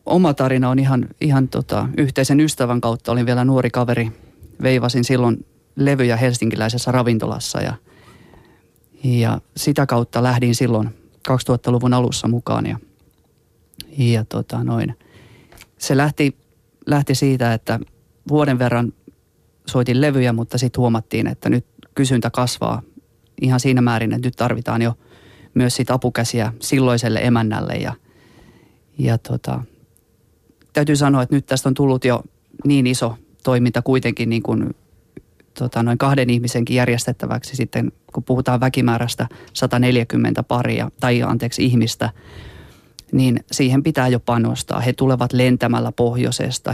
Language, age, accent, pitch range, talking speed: Finnish, 30-49, native, 115-130 Hz, 125 wpm